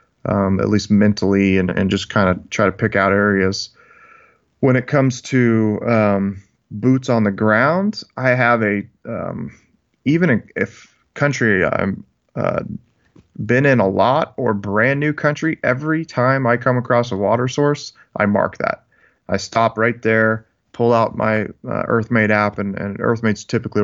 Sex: male